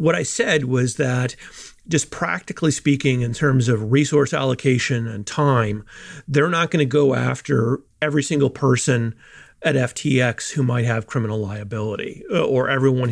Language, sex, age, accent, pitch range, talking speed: English, male, 40-59, American, 120-145 Hz, 150 wpm